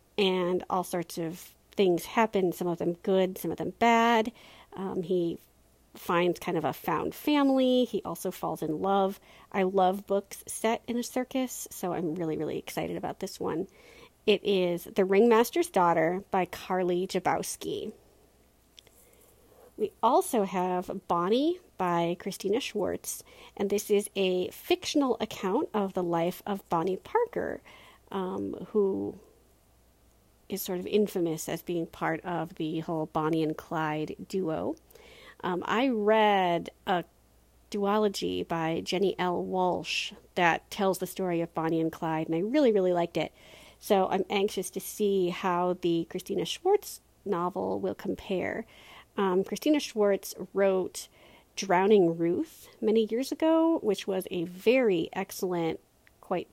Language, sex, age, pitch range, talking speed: English, female, 40-59, 175-215 Hz, 145 wpm